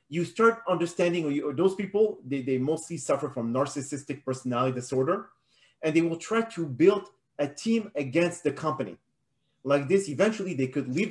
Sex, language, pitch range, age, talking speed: male, Hebrew, 135-180 Hz, 40-59, 160 wpm